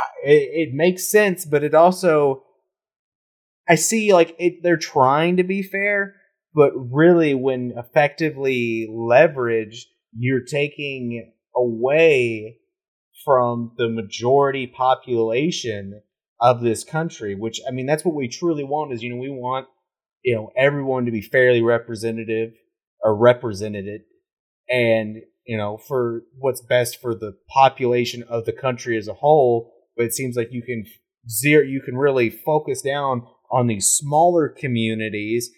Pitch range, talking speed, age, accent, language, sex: 115-150 Hz, 140 wpm, 30-49, American, English, male